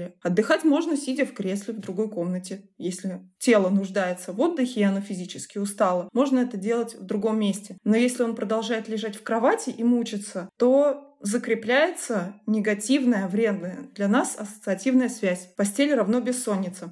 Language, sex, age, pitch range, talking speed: Russian, female, 20-39, 205-245 Hz, 155 wpm